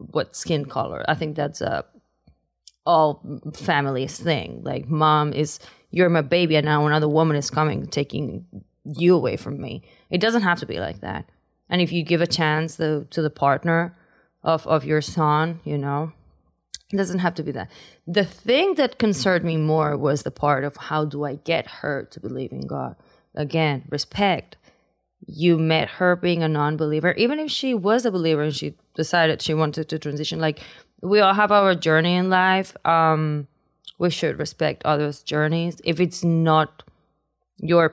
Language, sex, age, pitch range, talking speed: English, female, 20-39, 150-180 Hz, 180 wpm